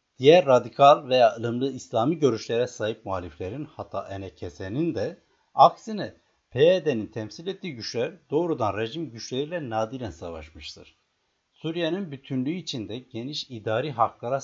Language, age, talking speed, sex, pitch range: Turkish, 60-79, 110 wpm, male, 100-145 Hz